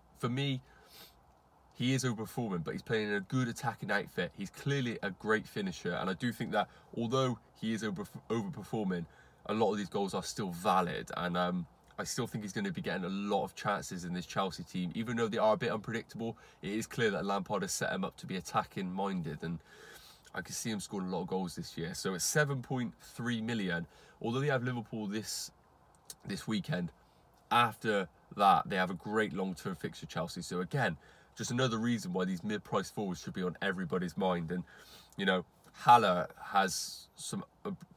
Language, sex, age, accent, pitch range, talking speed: English, male, 20-39, British, 90-125 Hz, 205 wpm